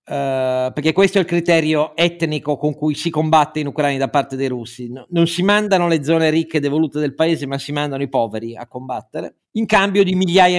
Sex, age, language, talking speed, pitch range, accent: male, 50-69, Italian, 220 wpm, 140-165 Hz, native